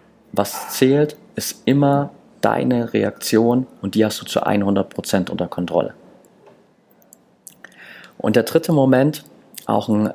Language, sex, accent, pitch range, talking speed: German, male, German, 100-120 Hz, 120 wpm